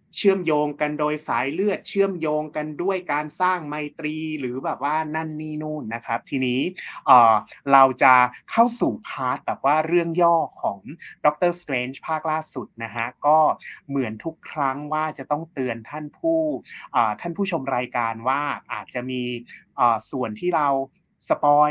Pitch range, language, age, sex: 125-160 Hz, Thai, 30-49, male